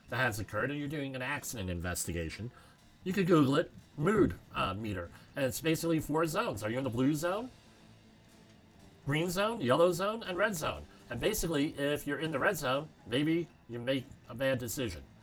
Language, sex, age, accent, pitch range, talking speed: English, male, 40-59, American, 105-160 Hz, 190 wpm